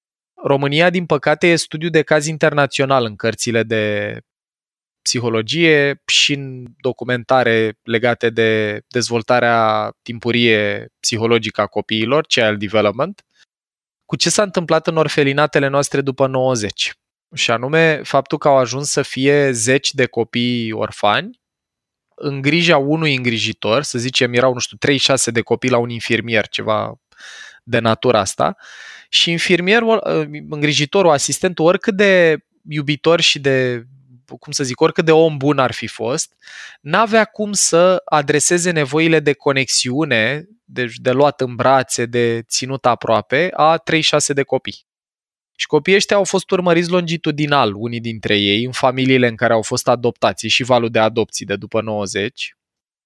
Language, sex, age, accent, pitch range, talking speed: Romanian, male, 20-39, native, 115-155 Hz, 145 wpm